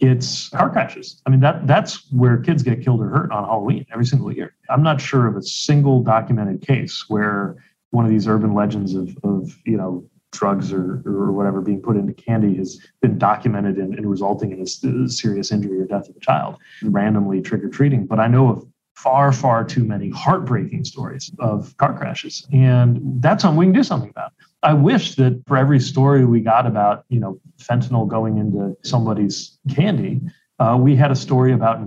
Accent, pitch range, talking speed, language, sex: American, 110-145 Hz, 195 wpm, English, male